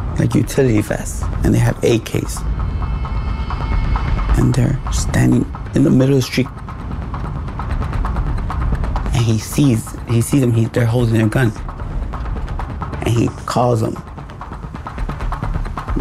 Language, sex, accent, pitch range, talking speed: English, male, American, 80-115 Hz, 120 wpm